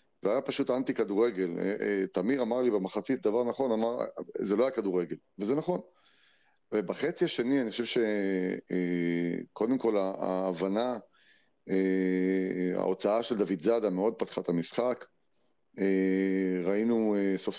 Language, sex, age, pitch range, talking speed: Hebrew, male, 30-49, 95-120 Hz, 120 wpm